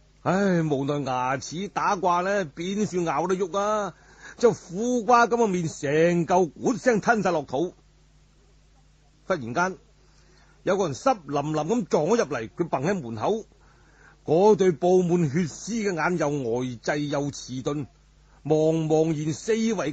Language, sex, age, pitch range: Chinese, male, 40-59, 145-215 Hz